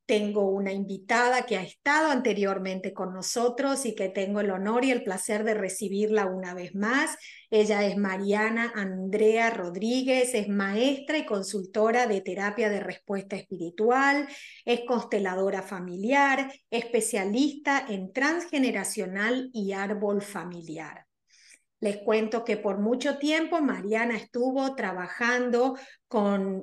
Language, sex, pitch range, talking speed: Spanish, female, 200-255 Hz, 125 wpm